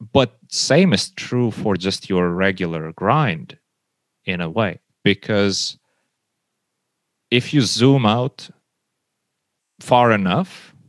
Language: English